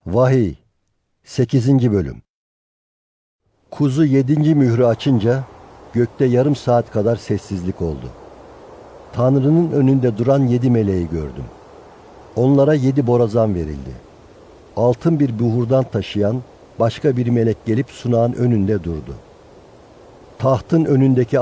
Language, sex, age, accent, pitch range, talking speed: Turkish, male, 60-79, native, 105-130 Hz, 100 wpm